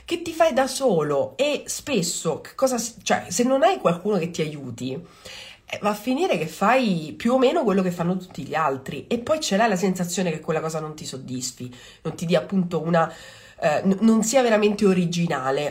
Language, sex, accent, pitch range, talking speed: Italian, female, native, 155-200 Hz, 205 wpm